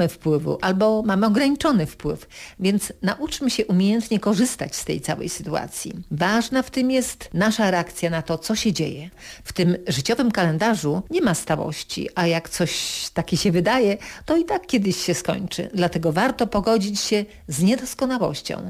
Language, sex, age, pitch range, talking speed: Polish, female, 50-69, 170-220 Hz, 160 wpm